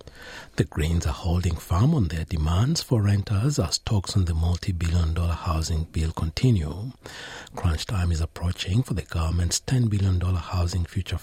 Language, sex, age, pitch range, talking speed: English, male, 60-79, 85-100 Hz, 160 wpm